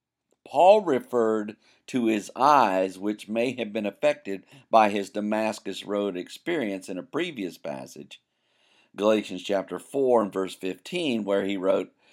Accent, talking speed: American, 140 wpm